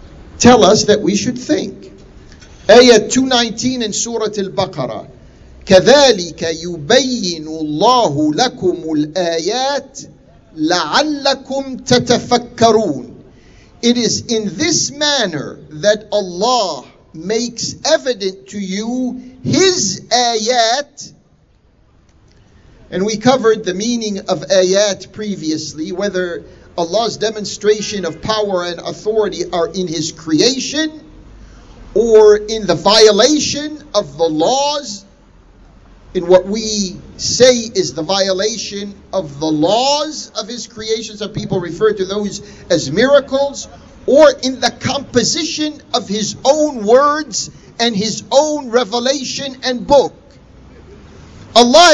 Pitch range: 190-260 Hz